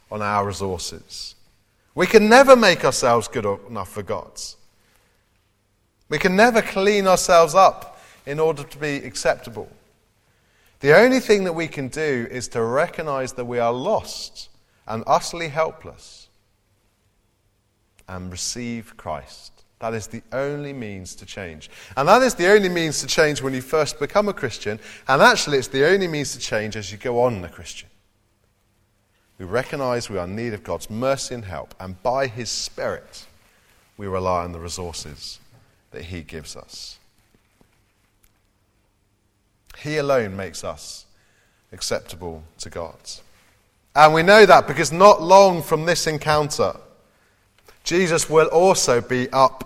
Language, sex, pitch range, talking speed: English, male, 100-145 Hz, 150 wpm